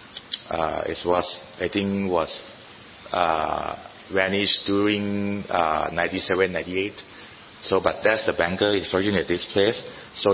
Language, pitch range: Thai, 90-110 Hz